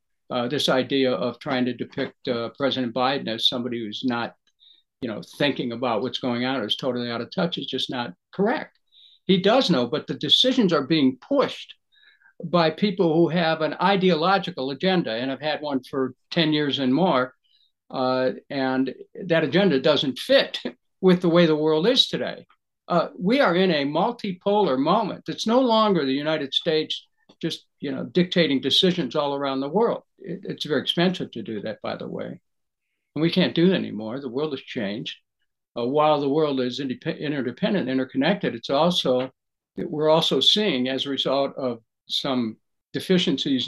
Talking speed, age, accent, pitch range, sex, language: 175 wpm, 60-79, American, 130-175 Hz, male, English